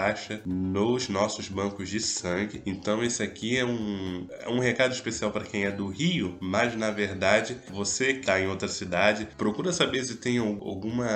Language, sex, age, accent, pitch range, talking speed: Portuguese, male, 10-29, Brazilian, 95-110 Hz, 170 wpm